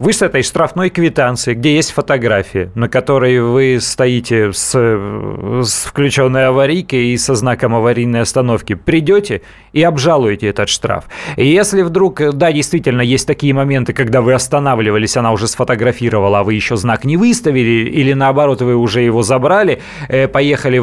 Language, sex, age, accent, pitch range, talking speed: Russian, male, 30-49, native, 115-150 Hz, 155 wpm